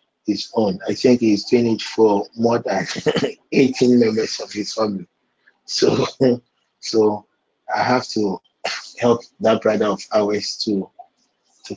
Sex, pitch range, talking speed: male, 100-120 Hz, 140 wpm